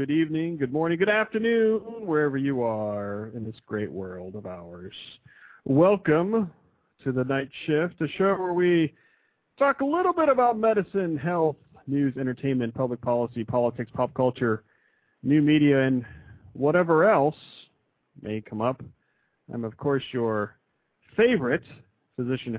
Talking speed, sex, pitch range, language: 140 wpm, male, 110-165 Hz, English